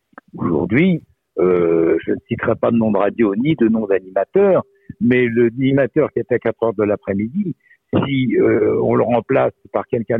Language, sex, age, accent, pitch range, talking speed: French, male, 60-79, French, 95-140 Hz, 175 wpm